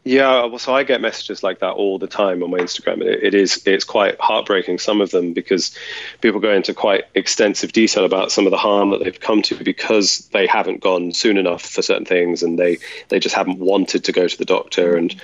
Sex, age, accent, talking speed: male, 30-49, British, 240 wpm